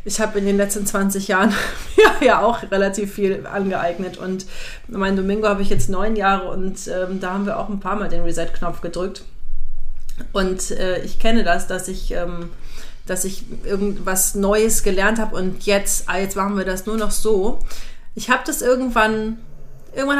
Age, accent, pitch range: 30-49, German, 175-220 Hz